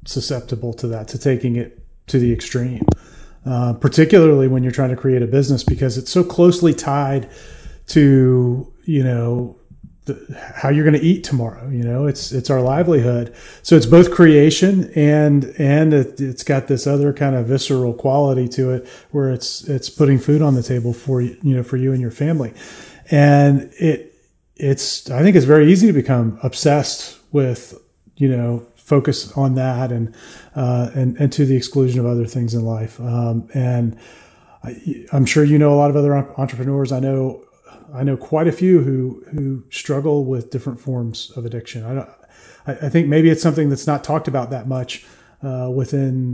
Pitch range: 125-145 Hz